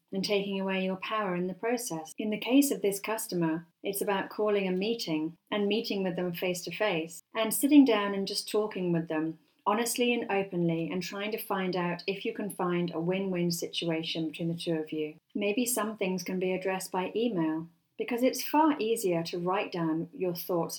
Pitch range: 165-210 Hz